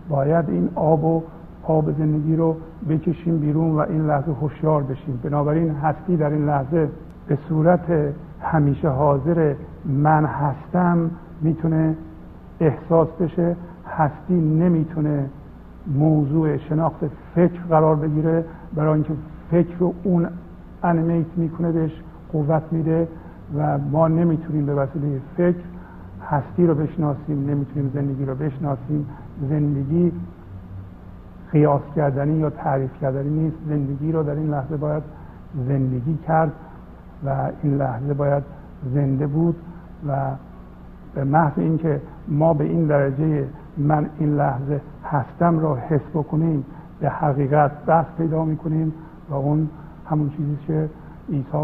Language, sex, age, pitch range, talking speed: Persian, male, 50-69, 145-160 Hz, 125 wpm